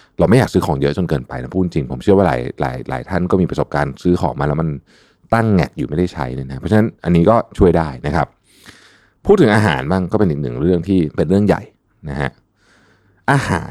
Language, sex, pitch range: Thai, male, 75-100 Hz